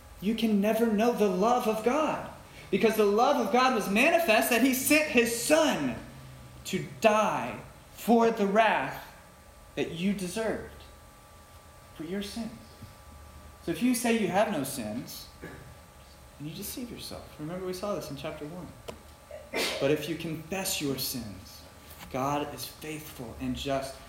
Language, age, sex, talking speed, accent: English, 30-49, male, 150 wpm, American